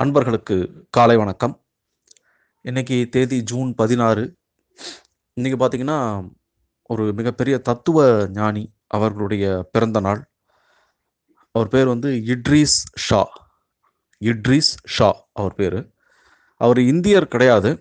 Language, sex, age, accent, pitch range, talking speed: Tamil, male, 30-49, native, 105-135 Hz, 95 wpm